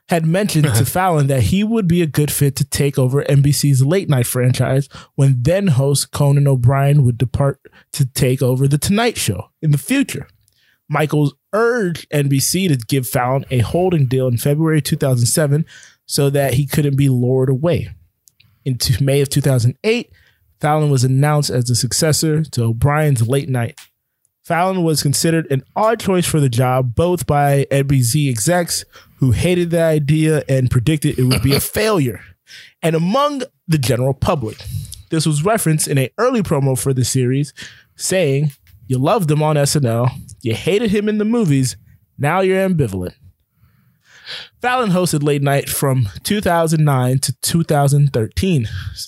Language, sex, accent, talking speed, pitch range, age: English, male, American, 155 wpm, 130-160 Hz, 20-39